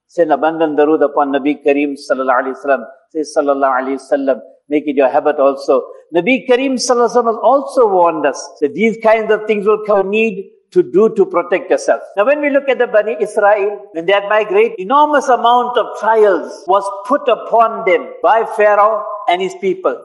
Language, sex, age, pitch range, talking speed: English, male, 60-79, 195-300 Hz, 195 wpm